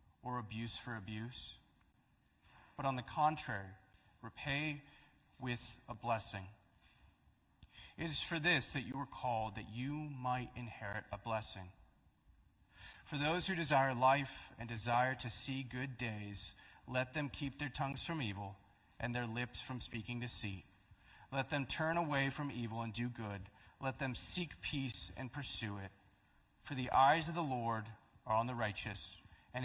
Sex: male